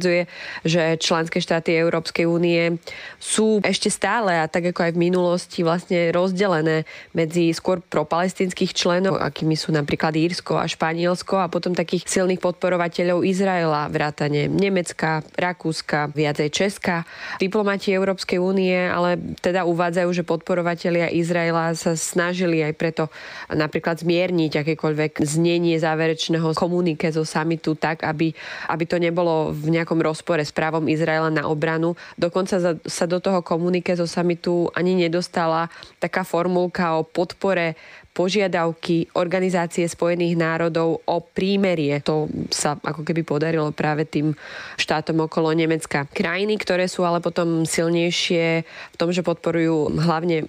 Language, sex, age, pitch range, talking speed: Slovak, female, 20-39, 160-180 Hz, 135 wpm